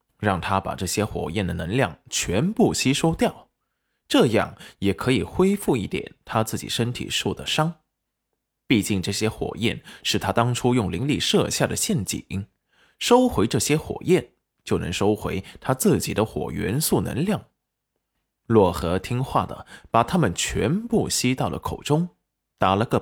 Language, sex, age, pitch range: Chinese, male, 20-39, 100-160 Hz